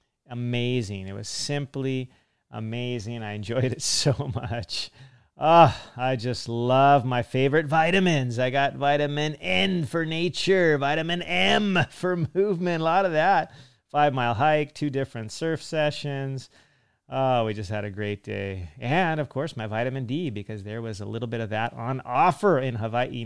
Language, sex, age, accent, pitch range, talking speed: English, male, 30-49, American, 115-175 Hz, 165 wpm